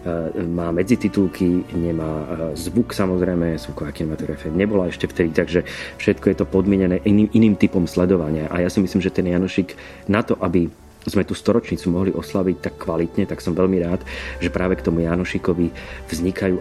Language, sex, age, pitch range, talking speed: Slovak, male, 30-49, 85-100 Hz, 170 wpm